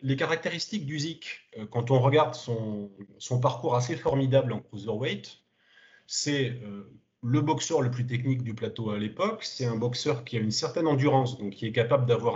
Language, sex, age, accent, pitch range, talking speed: French, male, 30-49, French, 115-145 Hz, 185 wpm